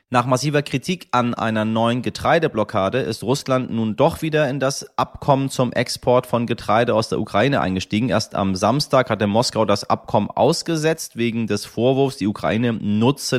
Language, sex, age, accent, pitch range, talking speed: German, male, 30-49, German, 95-120 Hz, 165 wpm